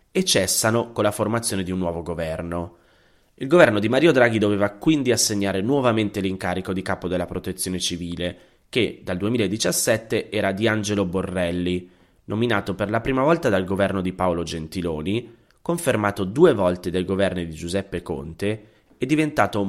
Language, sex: Italian, male